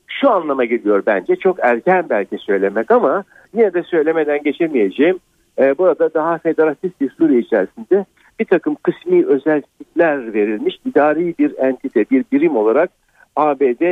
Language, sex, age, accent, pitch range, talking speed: Turkish, male, 60-79, native, 135-185 Hz, 140 wpm